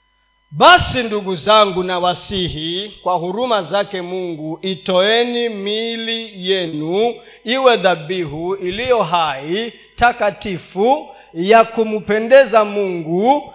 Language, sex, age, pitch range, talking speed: Swahili, male, 40-59, 195-300 Hz, 90 wpm